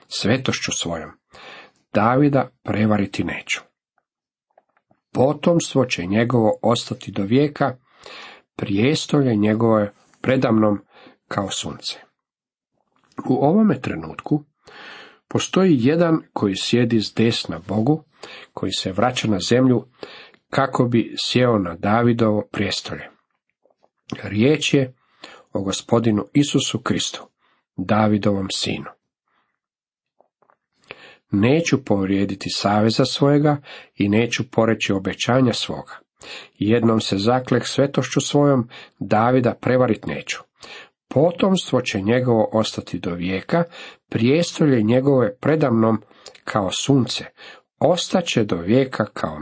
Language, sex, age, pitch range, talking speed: Croatian, male, 50-69, 105-140 Hz, 95 wpm